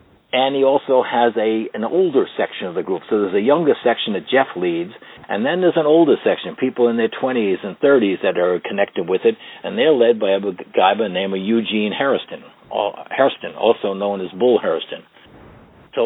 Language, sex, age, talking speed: English, male, 60-79, 200 wpm